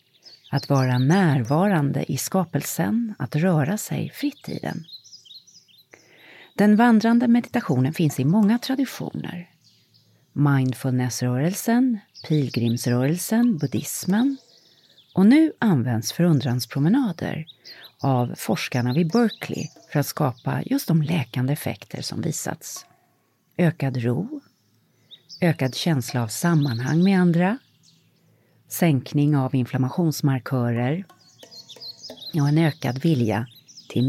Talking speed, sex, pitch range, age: 95 wpm, female, 130-185 Hz, 40-59